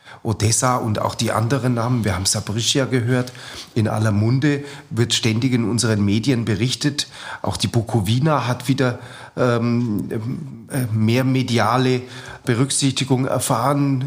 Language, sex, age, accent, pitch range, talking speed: German, male, 30-49, German, 110-130 Hz, 125 wpm